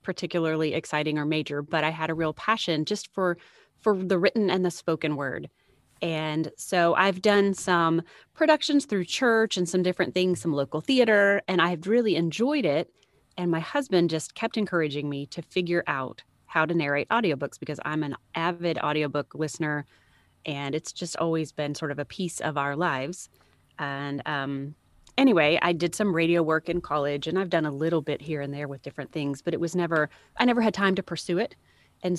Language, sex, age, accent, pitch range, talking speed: English, female, 30-49, American, 150-185 Hz, 195 wpm